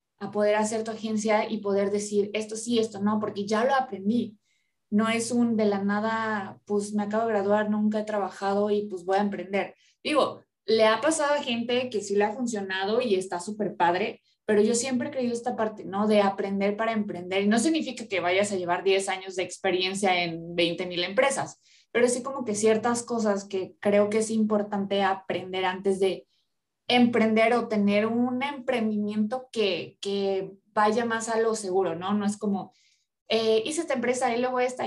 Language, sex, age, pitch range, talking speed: Spanish, female, 20-39, 200-235 Hz, 195 wpm